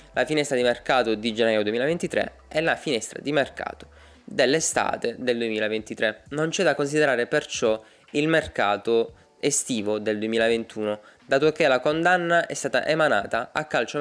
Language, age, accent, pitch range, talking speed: Italian, 20-39, native, 115-150 Hz, 145 wpm